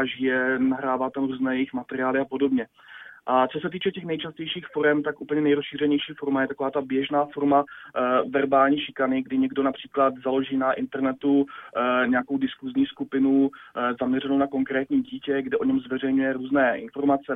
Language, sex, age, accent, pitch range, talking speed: Czech, male, 20-39, native, 130-145 Hz, 165 wpm